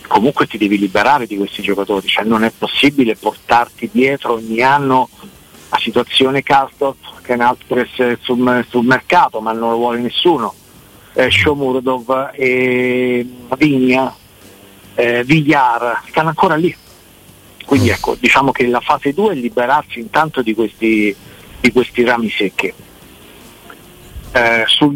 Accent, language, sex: native, Italian, male